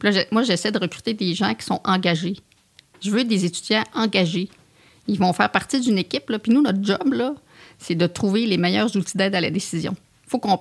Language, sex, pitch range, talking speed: French, female, 180-225 Hz, 225 wpm